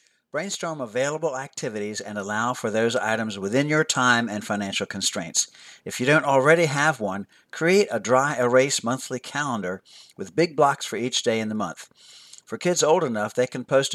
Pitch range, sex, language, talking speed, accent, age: 115-155 Hz, male, English, 180 wpm, American, 60-79